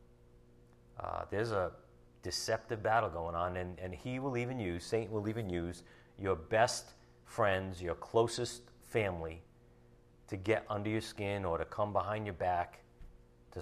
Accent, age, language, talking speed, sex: American, 40-59, English, 155 wpm, male